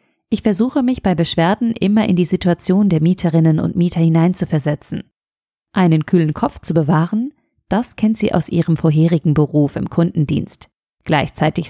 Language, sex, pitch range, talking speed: German, female, 160-210 Hz, 150 wpm